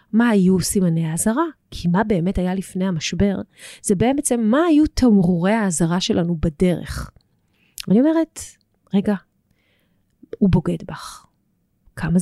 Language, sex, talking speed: Hebrew, female, 130 wpm